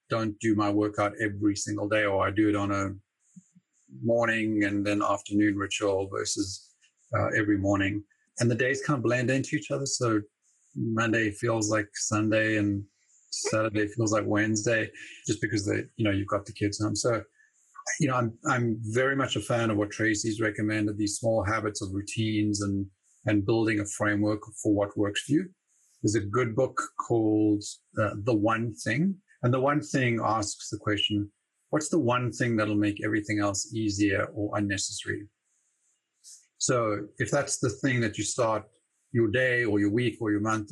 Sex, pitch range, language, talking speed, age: male, 105-115 Hz, English, 180 wpm, 30-49